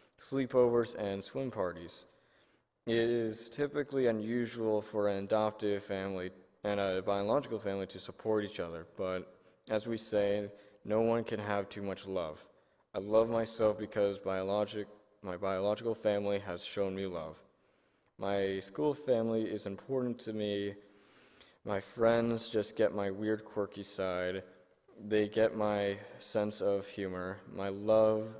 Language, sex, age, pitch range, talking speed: English, male, 20-39, 100-110 Hz, 135 wpm